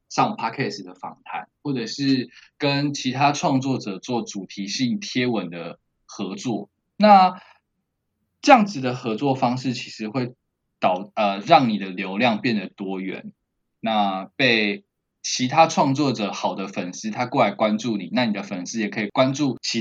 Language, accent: Chinese, native